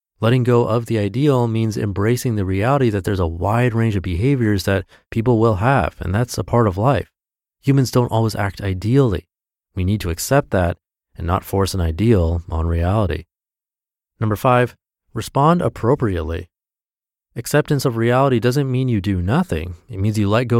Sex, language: male, English